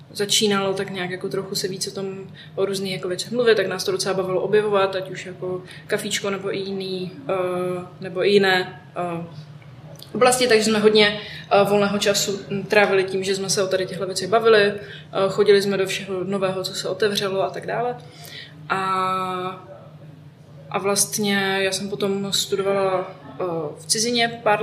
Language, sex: Czech, female